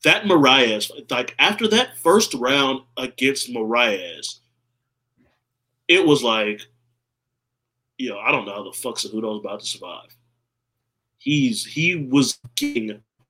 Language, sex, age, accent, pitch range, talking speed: English, male, 30-49, American, 120-140 Hz, 130 wpm